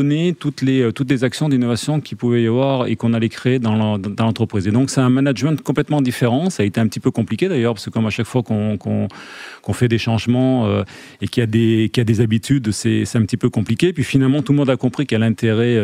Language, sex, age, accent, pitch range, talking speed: French, male, 30-49, French, 115-135 Hz, 270 wpm